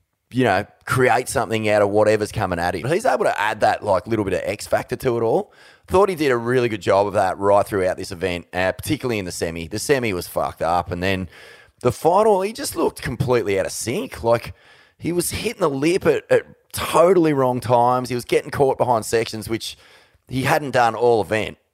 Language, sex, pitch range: English, male, 100-135 Hz